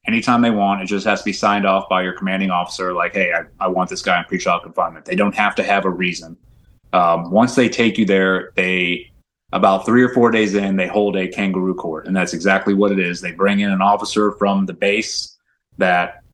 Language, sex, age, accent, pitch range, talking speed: English, male, 30-49, American, 95-105 Hz, 235 wpm